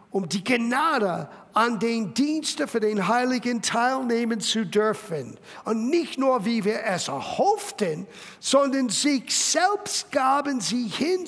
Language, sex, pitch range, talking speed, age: German, male, 200-265 Hz, 135 wpm, 50-69